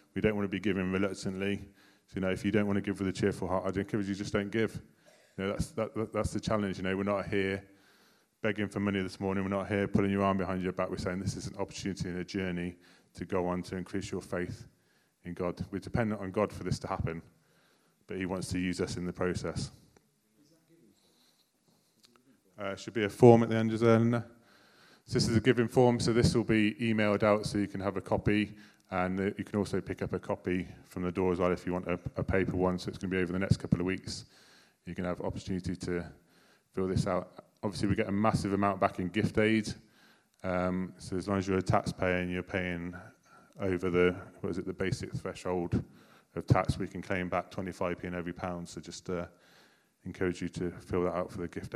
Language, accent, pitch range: English, British, 90-105 Hz